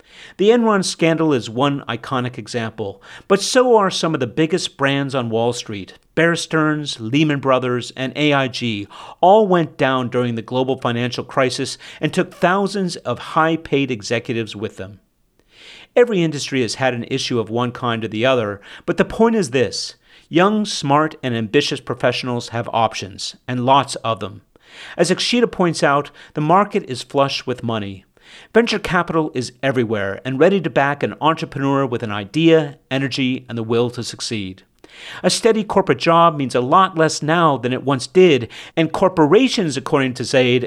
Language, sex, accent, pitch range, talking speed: English, male, American, 120-165 Hz, 170 wpm